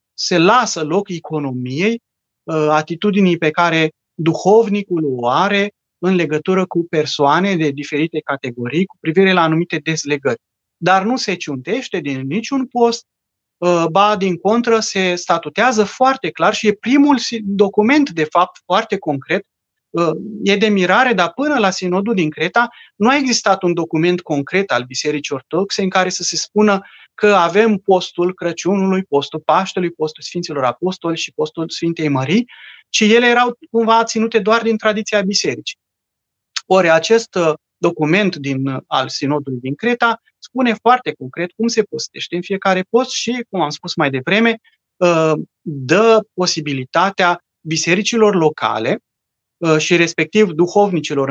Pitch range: 155-210 Hz